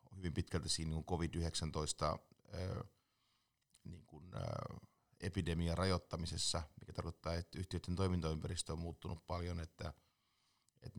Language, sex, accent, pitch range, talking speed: Finnish, male, native, 80-95 Hz, 100 wpm